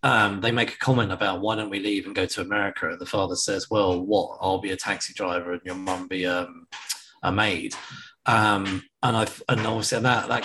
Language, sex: English, male